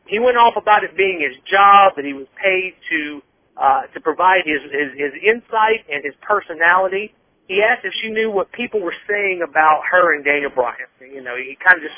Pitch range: 155-210 Hz